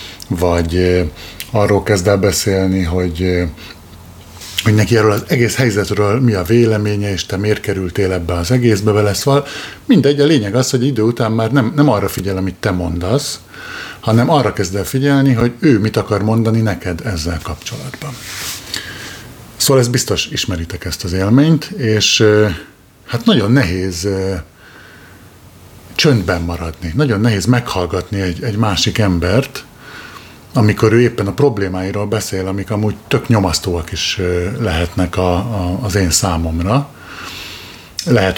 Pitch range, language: 95-115 Hz, Hungarian